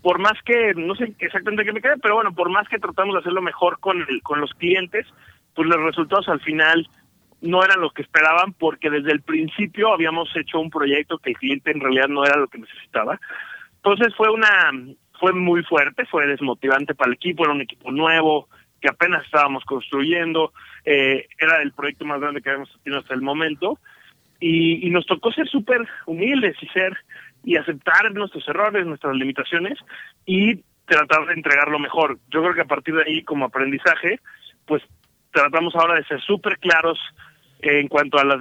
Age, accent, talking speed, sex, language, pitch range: 30-49, Mexican, 190 wpm, male, English, 145-175 Hz